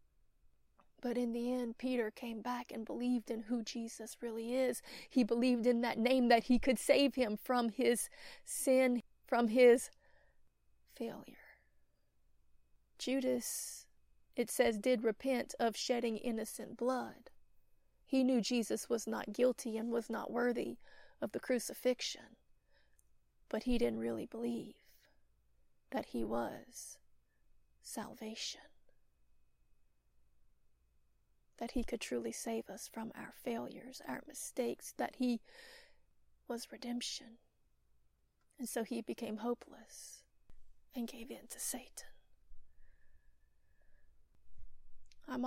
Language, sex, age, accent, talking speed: English, female, 30-49, American, 115 wpm